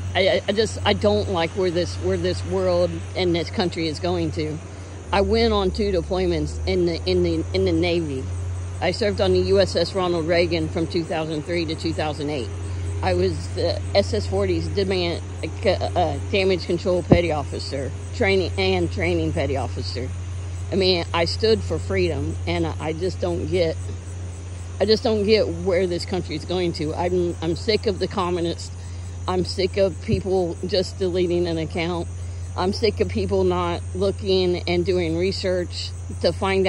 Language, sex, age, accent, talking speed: English, female, 50-69, American, 165 wpm